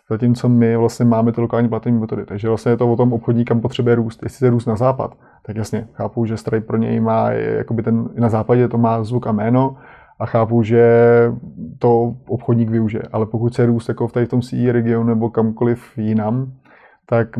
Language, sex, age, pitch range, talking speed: Slovak, male, 20-39, 115-125 Hz, 195 wpm